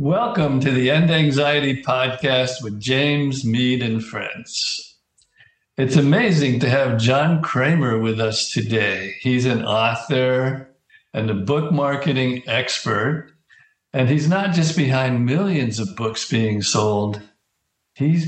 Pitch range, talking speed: 115-145 Hz, 130 wpm